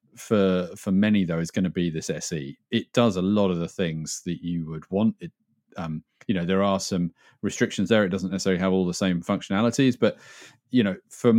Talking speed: 220 wpm